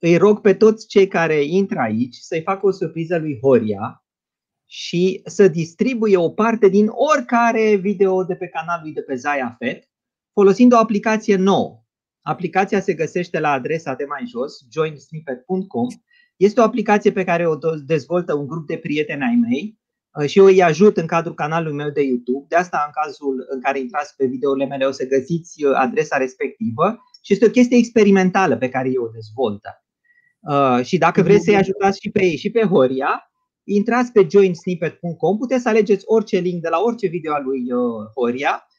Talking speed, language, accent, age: 180 wpm, Romanian, native, 30-49